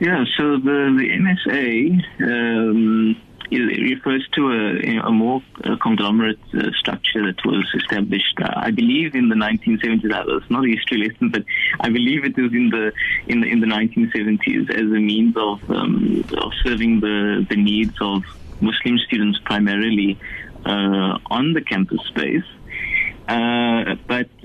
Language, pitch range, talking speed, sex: English, 105-120 Hz, 145 wpm, male